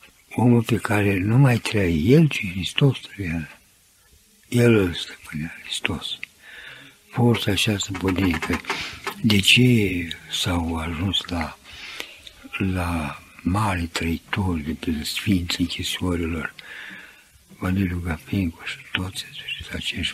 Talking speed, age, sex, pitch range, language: 105 wpm, 60-79, male, 90-120 Hz, Romanian